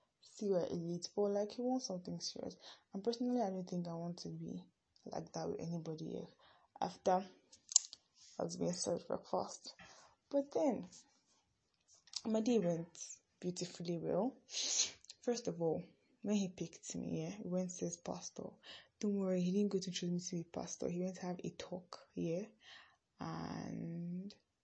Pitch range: 170-205 Hz